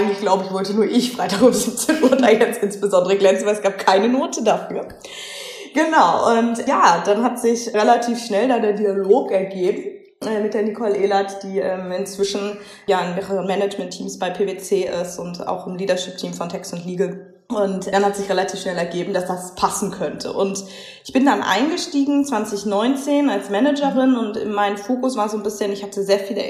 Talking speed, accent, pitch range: 190 wpm, German, 190-220 Hz